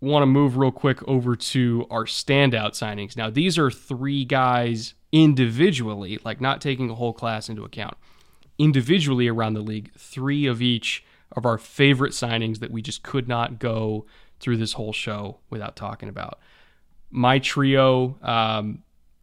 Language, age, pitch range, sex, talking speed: English, 20-39, 115-130 Hz, male, 160 wpm